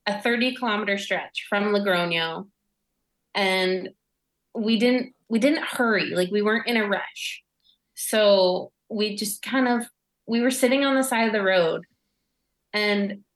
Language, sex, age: English, female, 20-39